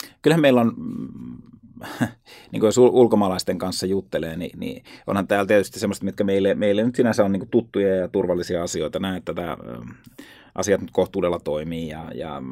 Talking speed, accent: 165 wpm, native